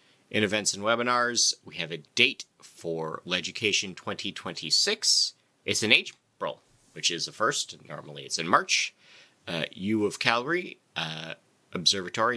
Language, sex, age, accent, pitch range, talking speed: English, male, 30-49, American, 80-110 Hz, 135 wpm